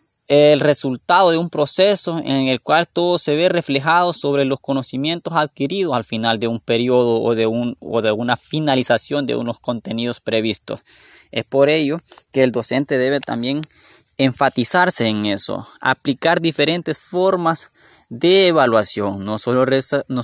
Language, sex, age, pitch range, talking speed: Spanish, male, 20-39, 125-165 Hz, 140 wpm